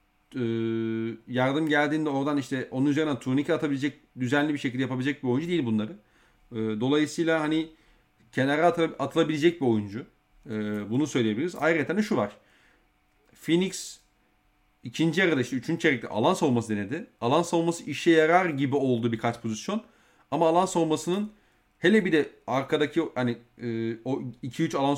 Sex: male